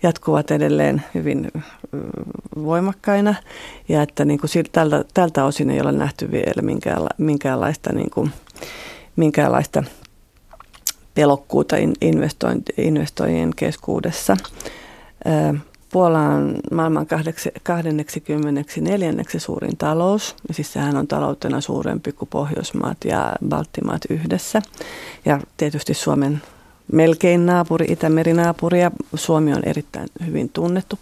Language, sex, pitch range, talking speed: Finnish, female, 145-175 Hz, 95 wpm